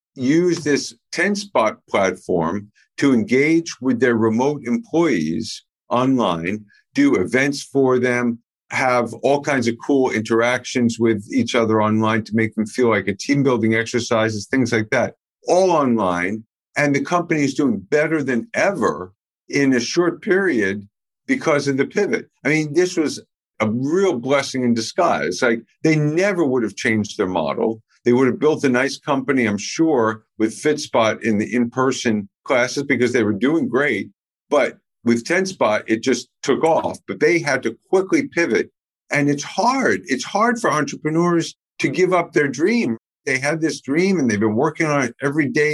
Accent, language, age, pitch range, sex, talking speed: American, English, 50-69, 115-155 Hz, male, 175 wpm